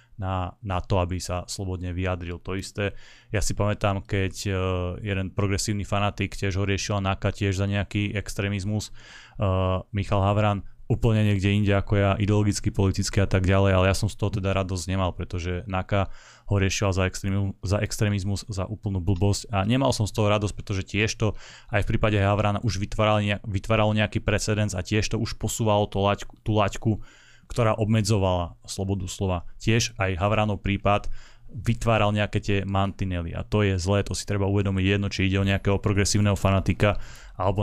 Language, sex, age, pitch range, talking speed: Slovak, male, 20-39, 95-110 Hz, 180 wpm